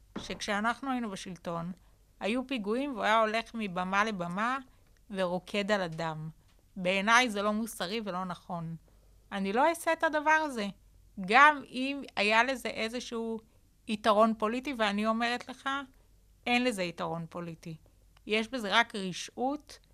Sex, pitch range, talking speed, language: female, 195-250 Hz, 130 wpm, Hebrew